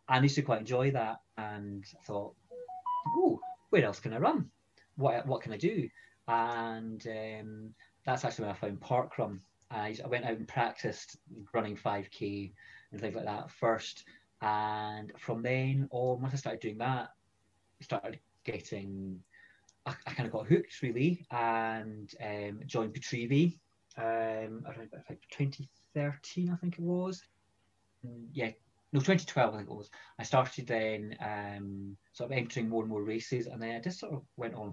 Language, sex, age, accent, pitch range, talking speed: English, male, 20-39, British, 110-150 Hz, 165 wpm